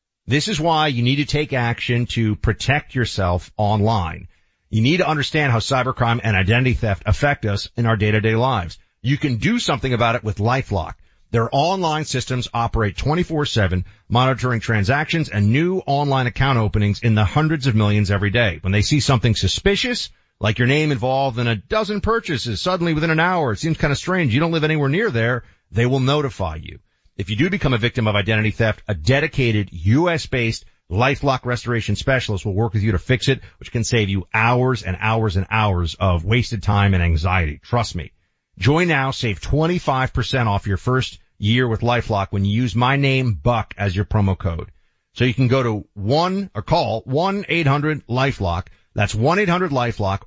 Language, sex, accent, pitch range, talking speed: English, male, American, 105-140 Hz, 185 wpm